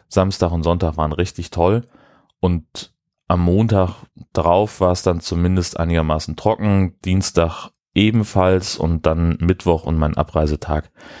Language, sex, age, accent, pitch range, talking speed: German, male, 30-49, German, 80-90 Hz, 130 wpm